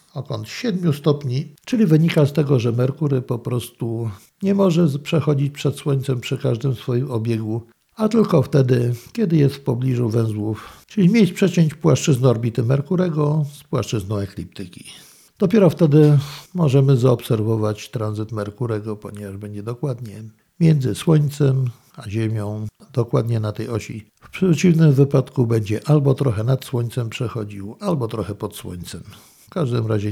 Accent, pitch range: native, 110-150 Hz